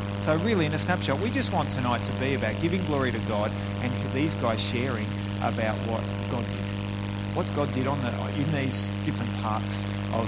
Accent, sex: Australian, male